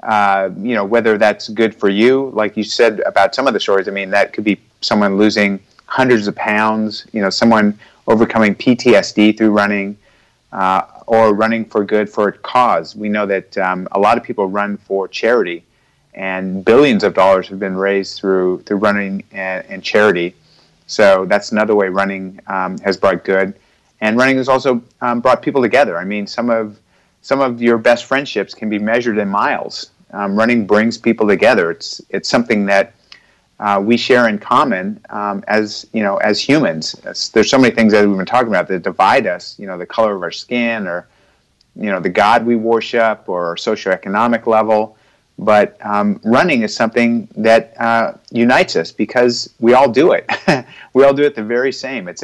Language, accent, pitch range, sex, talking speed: English, American, 100-115 Hz, male, 190 wpm